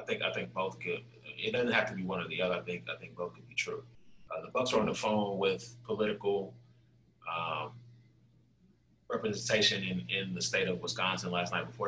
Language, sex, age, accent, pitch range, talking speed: English, male, 20-39, American, 90-120 Hz, 215 wpm